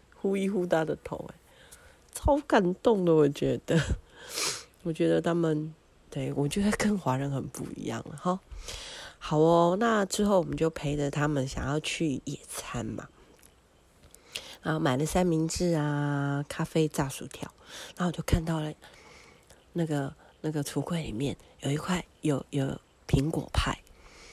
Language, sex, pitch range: Chinese, female, 140-180 Hz